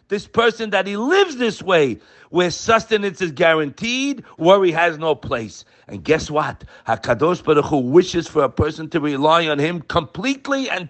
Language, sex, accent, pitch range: English, male, American, 160-260 Hz